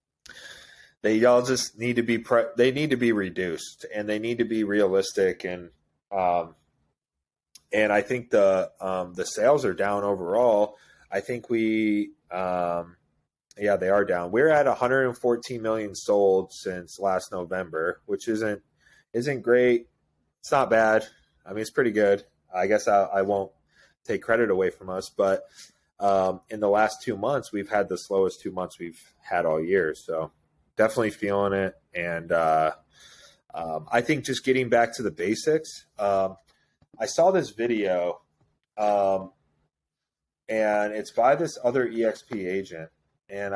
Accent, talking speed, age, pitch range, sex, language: American, 155 wpm, 30-49, 95-120 Hz, male, English